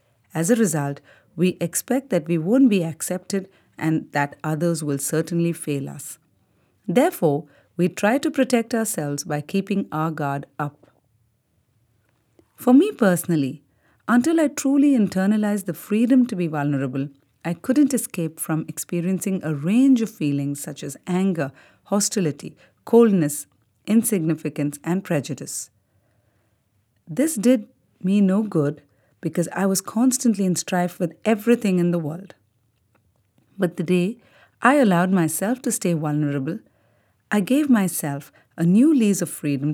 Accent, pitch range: Indian, 140-200 Hz